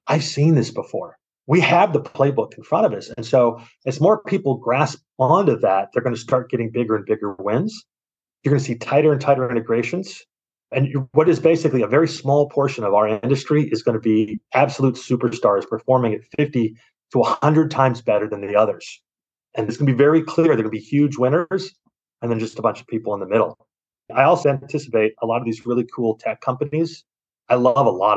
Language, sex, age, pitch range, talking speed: English, male, 30-49, 115-145 Hz, 220 wpm